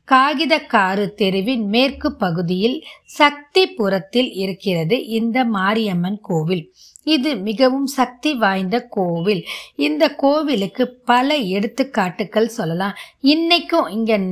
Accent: native